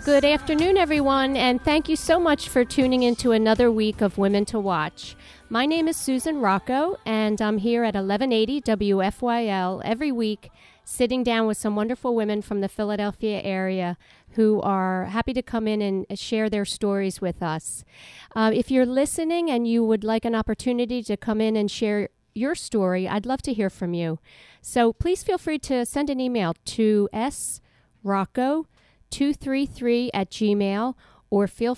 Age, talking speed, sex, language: 50-69, 170 wpm, female, English